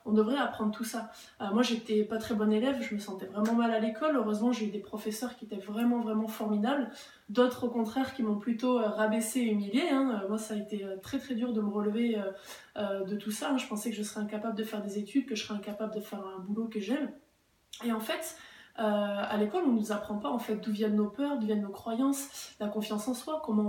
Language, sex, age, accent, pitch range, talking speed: French, female, 20-39, French, 210-245 Hz, 260 wpm